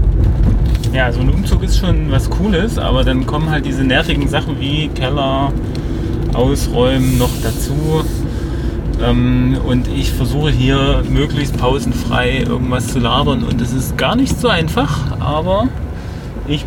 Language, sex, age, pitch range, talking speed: German, male, 30-49, 110-145 Hz, 135 wpm